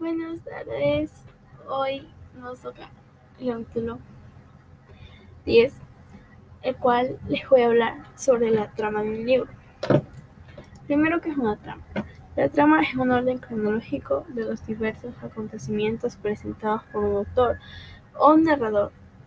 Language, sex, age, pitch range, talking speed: Spanish, female, 10-29, 210-275 Hz, 130 wpm